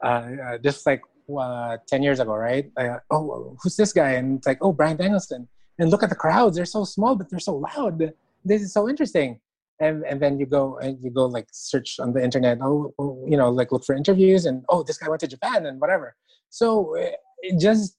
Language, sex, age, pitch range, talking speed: English, male, 20-39, 135-175 Hz, 235 wpm